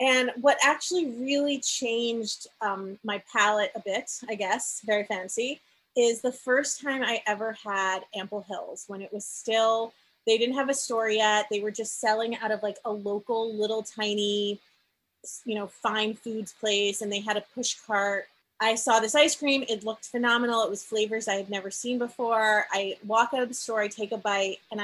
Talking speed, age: 200 wpm, 30-49